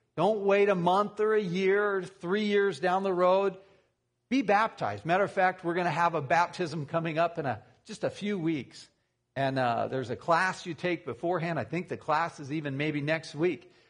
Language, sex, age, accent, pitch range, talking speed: English, male, 50-69, American, 150-210 Hz, 205 wpm